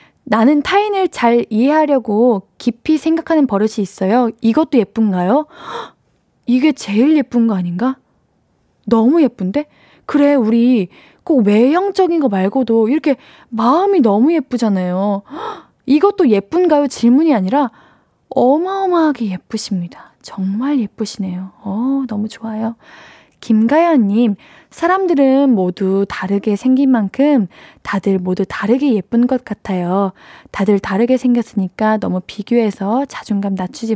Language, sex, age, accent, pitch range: Korean, female, 20-39, native, 200-275 Hz